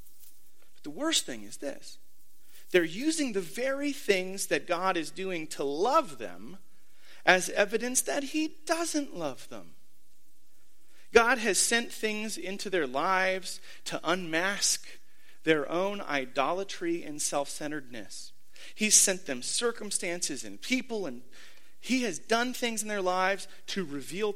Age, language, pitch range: 30-49, English, 140-215 Hz